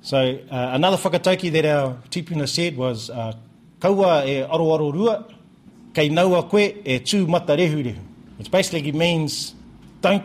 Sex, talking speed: male, 105 wpm